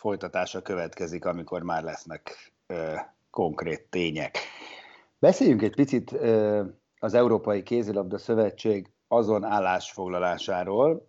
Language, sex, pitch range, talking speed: Hungarian, male, 105-125 Hz, 95 wpm